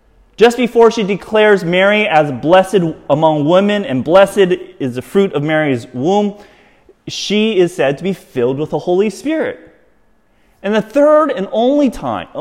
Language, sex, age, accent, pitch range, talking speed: English, male, 30-49, American, 145-215 Hz, 160 wpm